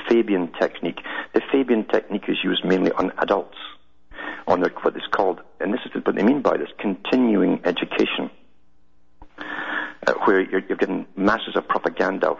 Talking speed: 155 wpm